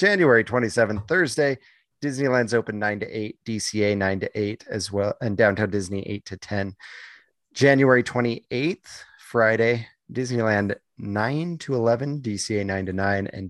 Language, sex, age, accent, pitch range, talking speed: English, male, 30-49, American, 105-130 Hz, 140 wpm